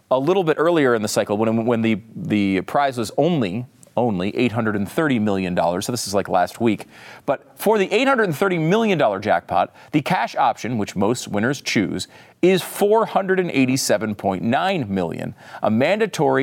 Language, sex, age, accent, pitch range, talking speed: English, male, 40-59, American, 125-195 Hz, 150 wpm